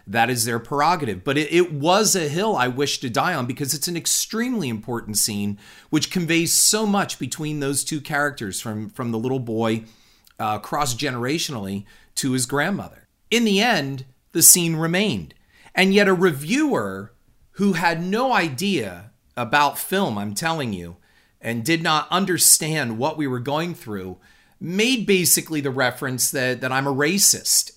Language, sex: English, male